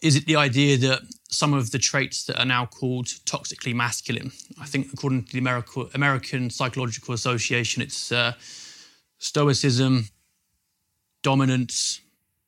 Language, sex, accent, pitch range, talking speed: English, male, British, 120-140 Hz, 130 wpm